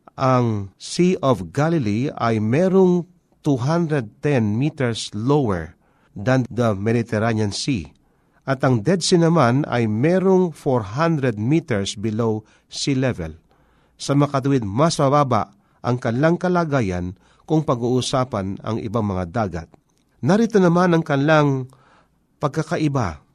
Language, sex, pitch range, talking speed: Filipino, male, 110-155 Hz, 110 wpm